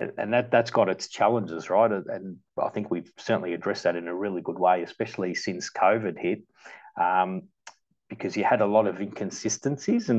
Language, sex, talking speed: English, male, 190 wpm